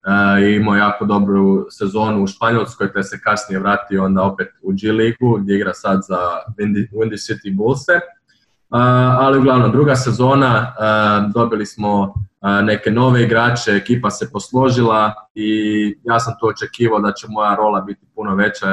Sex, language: male, Croatian